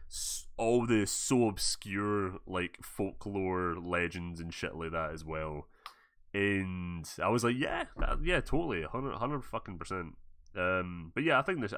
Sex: male